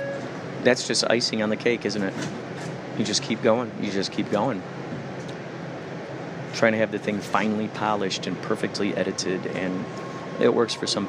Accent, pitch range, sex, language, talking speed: American, 110-135 Hz, male, English, 175 wpm